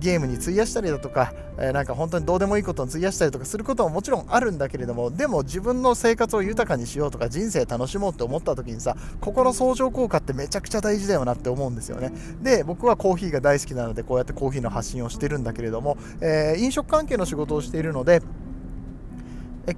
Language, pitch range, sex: Japanese, 130-200 Hz, male